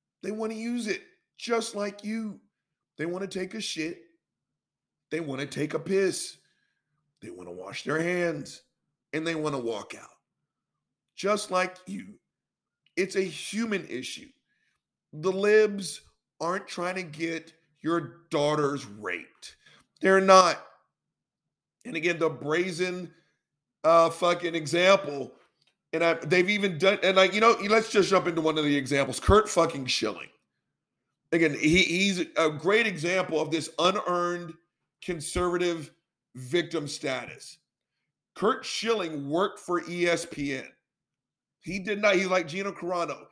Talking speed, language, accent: 130 wpm, English, American